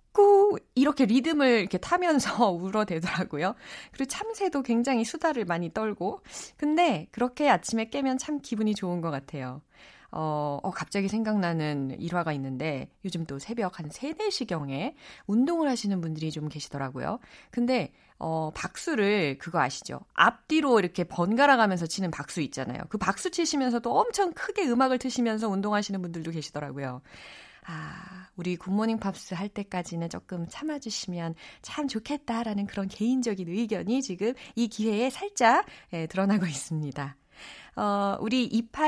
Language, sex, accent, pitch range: Korean, female, native, 175-275 Hz